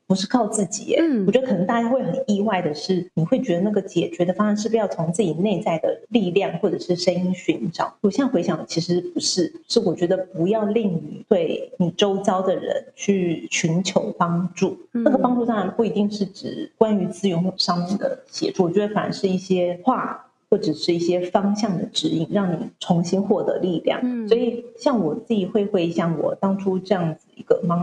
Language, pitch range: Chinese, 175-230 Hz